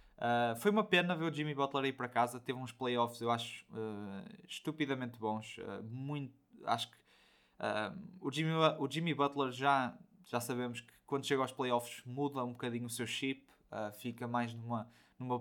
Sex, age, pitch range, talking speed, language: male, 20-39, 115-140 Hz, 185 wpm, Portuguese